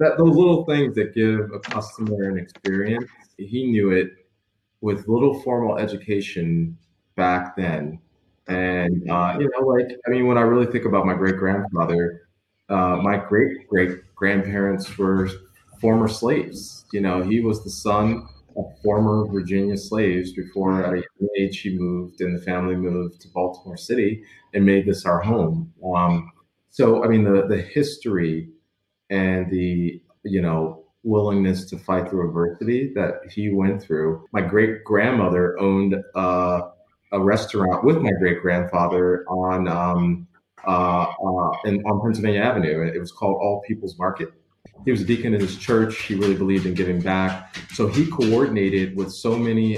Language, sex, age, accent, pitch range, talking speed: English, male, 20-39, American, 90-105 Hz, 155 wpm